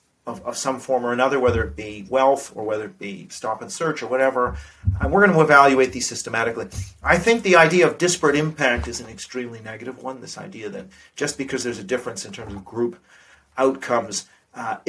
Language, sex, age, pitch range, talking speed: English, male, 40-59, 120-155 Hz, 205 wpm